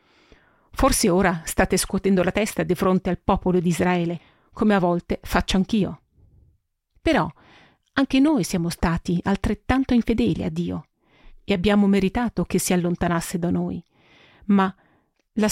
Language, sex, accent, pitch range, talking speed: Italian, female, native, 175-225 Hz, 140 wpm